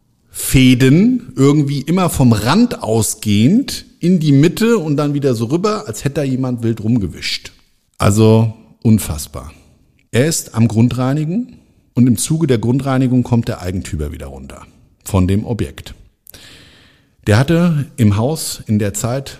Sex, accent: male, German